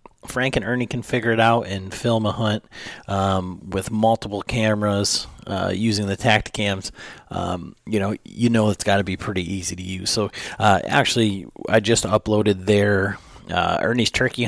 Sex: male